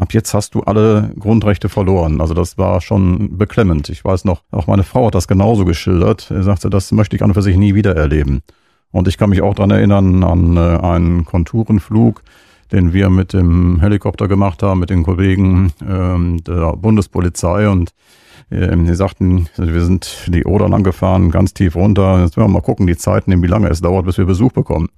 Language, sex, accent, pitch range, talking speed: German, male, German, 85-100 Hz, 195 wpm